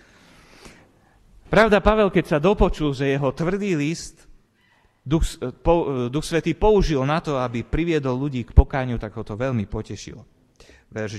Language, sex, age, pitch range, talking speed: Slovak, male, 30-49, 100-130 Hz, 145 wpm